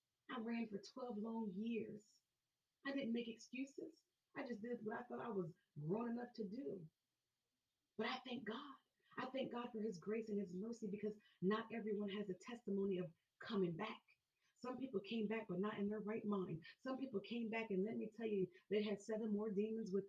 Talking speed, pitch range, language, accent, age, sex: 205 wpm, 185-230 Hz, English, American, 30-49, female